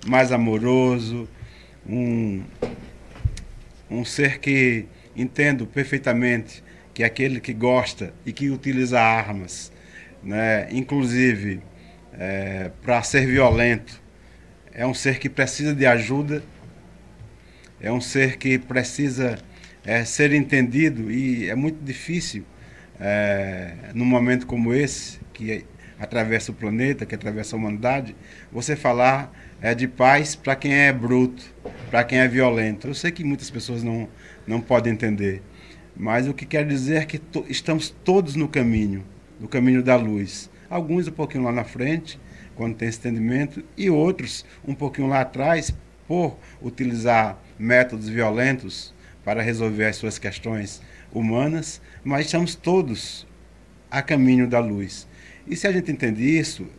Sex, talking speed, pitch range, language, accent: male, 135 wpm, 110-135 Hz, Portuguese, Brazilian